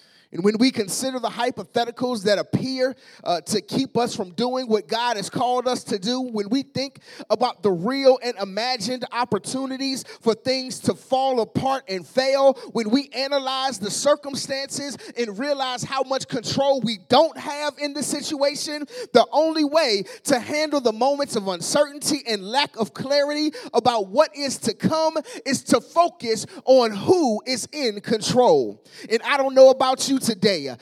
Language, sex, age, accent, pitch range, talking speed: English, male, 30-49, American, 225-280 Hz, 165 wpm